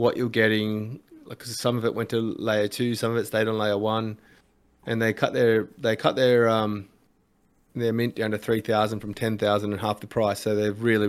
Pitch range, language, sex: 110-125 Hz, English, male